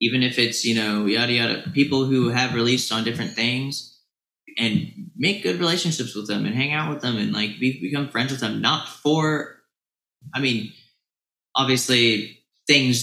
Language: English